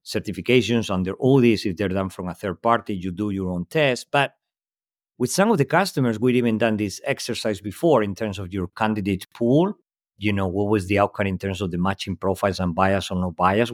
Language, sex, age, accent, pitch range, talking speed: English, male, 50-69, Spanish, 90-110 Hz, 225 wpm